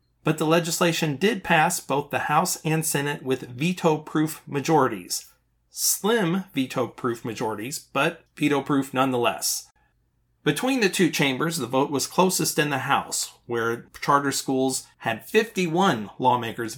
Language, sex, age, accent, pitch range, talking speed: English, male, 40-59, American, 130-170 Hz, 130 wpm